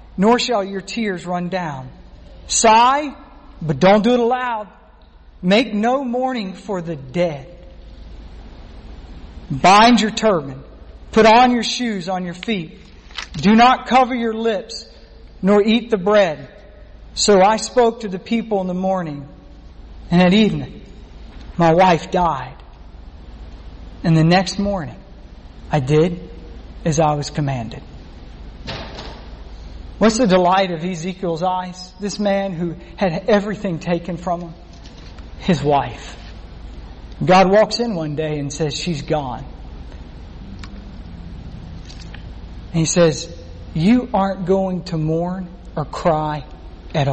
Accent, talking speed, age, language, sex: American, 125 wpm, 50-69, English, male